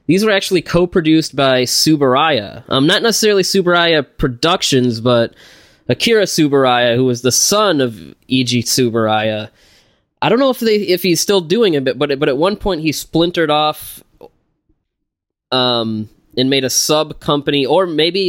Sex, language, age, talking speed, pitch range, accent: male, English, 20-39, 155 wpm, 120-155 Hz, American